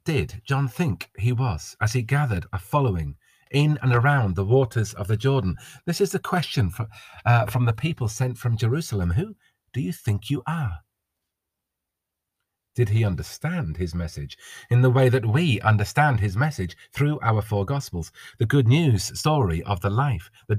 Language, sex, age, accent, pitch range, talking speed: English, male, 40-59, British, 95-130 Hz, 175 wpm